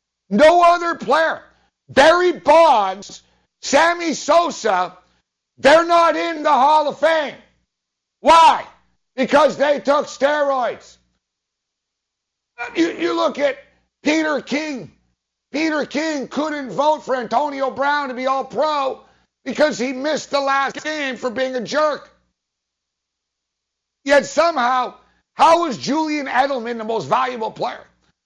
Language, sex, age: English, male, 60-79